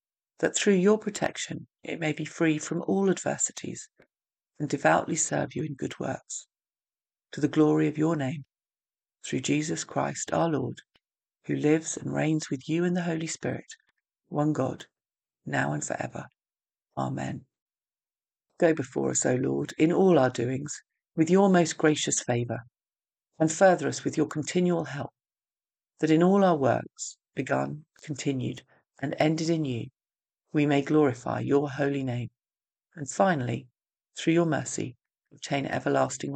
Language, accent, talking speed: English, British, 150 wpm